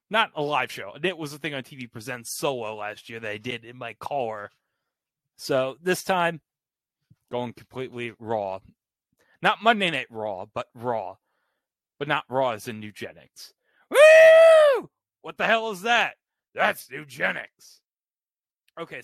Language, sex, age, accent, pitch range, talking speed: English, male, 30-49, American, 120-170 Hz, 150 wpm